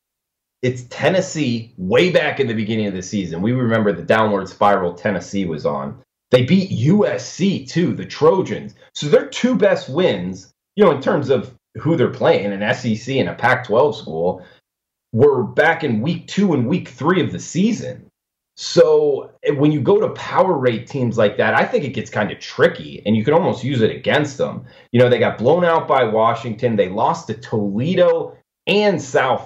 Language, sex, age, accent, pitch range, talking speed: English, male, 30-49, American, 100-130 Hz, 190 wpm